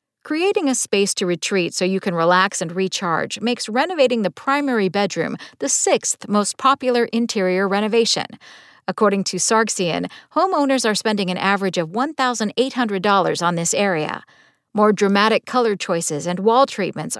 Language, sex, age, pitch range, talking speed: English, female, 50-69, 190-265 Hz, 145 wpm